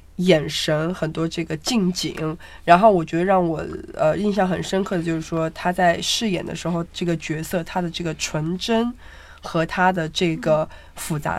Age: 20-39